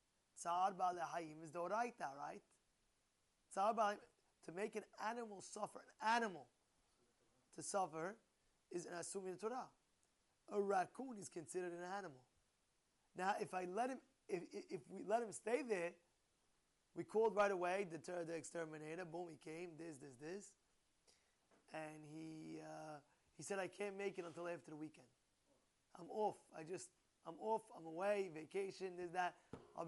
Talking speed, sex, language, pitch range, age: 150 wpm, male, English, 160-205 Hz, 20-39